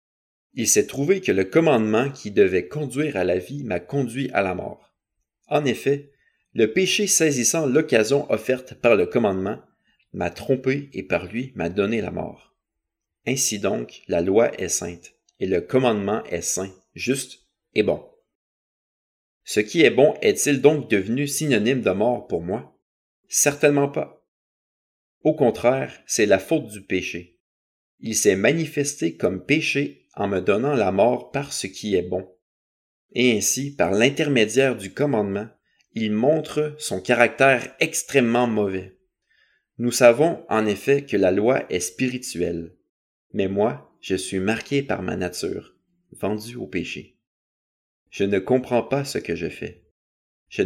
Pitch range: 95-145 Hz